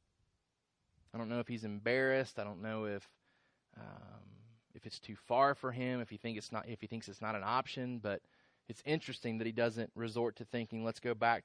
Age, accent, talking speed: 20-39, American, 210 wpm